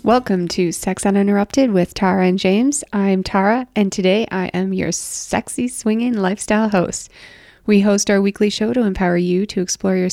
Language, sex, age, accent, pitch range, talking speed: English, female, 20-39, American, 185-220 Hz, 180 wpm